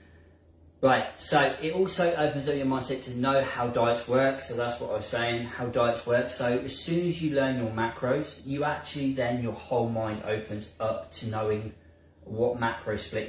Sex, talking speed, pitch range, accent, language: male, 195 wpm, 95-135 Hz, British, English